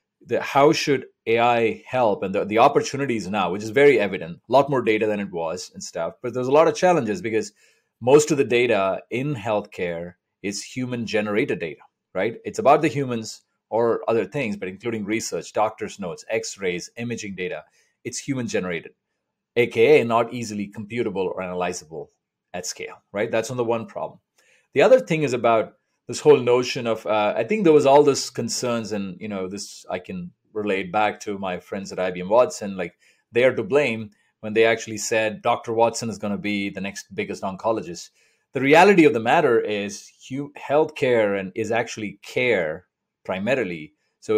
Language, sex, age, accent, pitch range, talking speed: English, male, 30-49, Indian, 105-140 Hz, 185 wpm